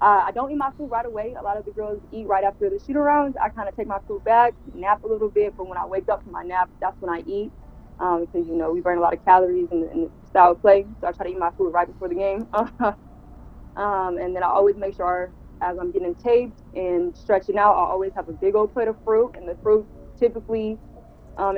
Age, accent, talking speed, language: 20-39, American, 265 wpm, English